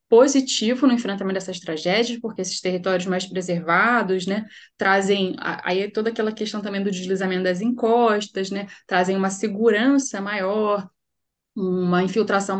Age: 10-29